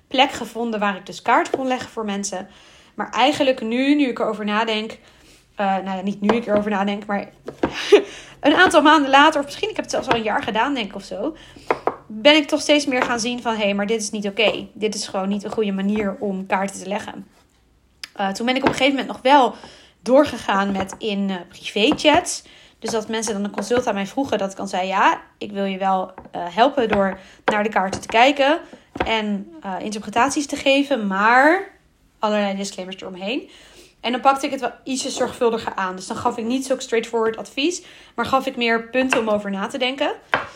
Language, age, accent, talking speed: Dutch, 20-39, Dutch, 220 wpm